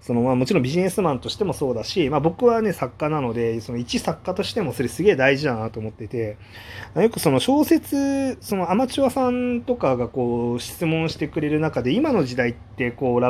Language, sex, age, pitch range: Japanese, male, 30-49, 115-175 Hz